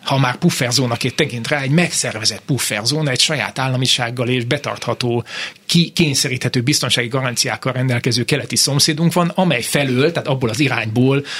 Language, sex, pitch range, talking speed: Hungarian, male, 125-160 Hz, 140 wpm